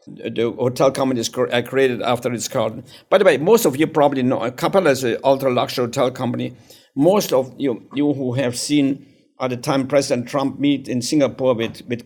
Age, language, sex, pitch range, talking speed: 60-79, English, male, 130-160 Hz, 200 wpm